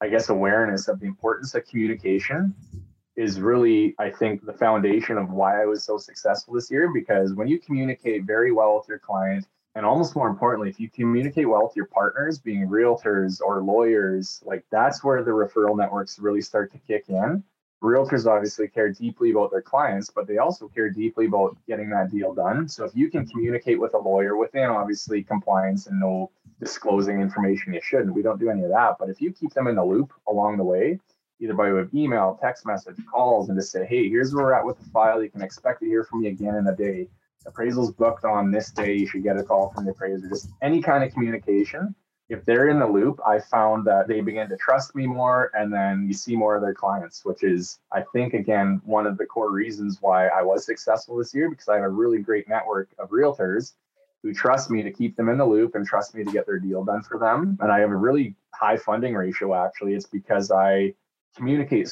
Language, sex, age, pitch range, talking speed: English, male, 20-39, 100-125 Hz, 230 wpm